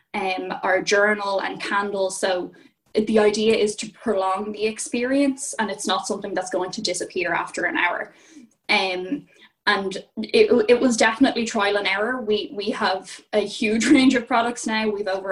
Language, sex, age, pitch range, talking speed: English, female, 10-29, 195-245 Hz, 170 wpm